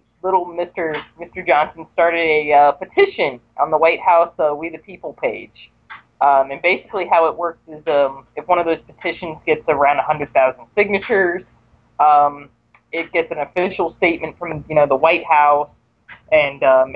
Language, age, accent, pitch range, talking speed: English, 20-39, American, 135-165 Hz, 170 wpm